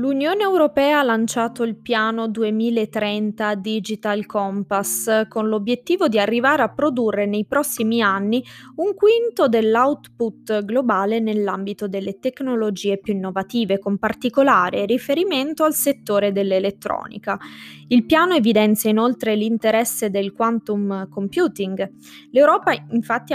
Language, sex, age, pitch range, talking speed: Italian, female, 20-39, 200-250 Hz, 110 wpm